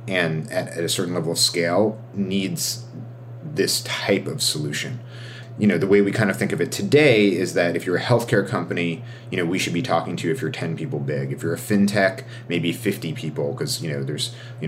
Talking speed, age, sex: 225 wpm, 30-49, male